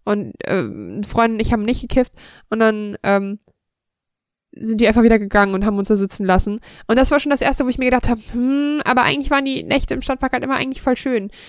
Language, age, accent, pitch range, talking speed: German, 20-39, German, 205-245 Hz, 235 wpm